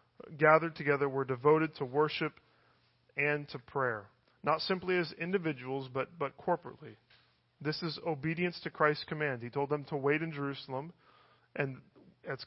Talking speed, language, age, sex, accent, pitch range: 150 wpm, English, 40-59, male, American, 130-160 Hz